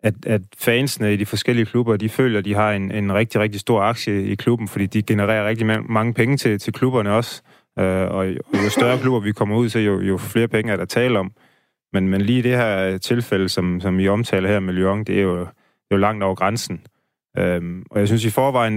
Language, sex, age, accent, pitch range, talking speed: Danish, male, 30-49, native, 95-120 Hz, 230 wpm